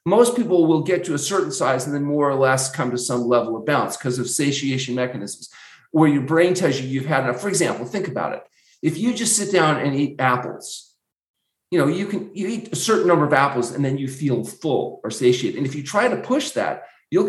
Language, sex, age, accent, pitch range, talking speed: English, male, 40-59, American, 145-200 Hz, 245 wpm